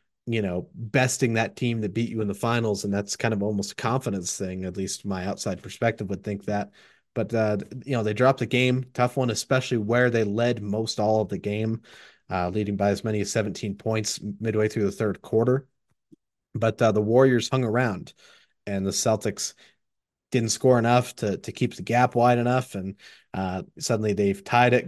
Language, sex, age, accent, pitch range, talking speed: English, male, 30-49, American, 100-120 Hz, 205 wpm